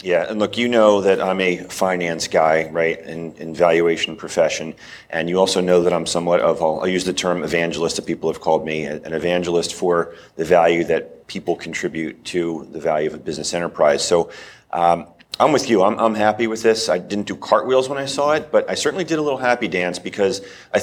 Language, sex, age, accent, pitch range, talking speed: English, male, 40-59, American, 85-110 Hz, 220 wpm